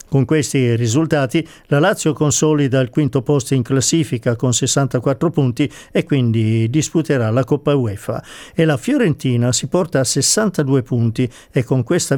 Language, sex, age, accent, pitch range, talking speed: Italian, male, 50-69, native, 125-155 Hz, 155 wpm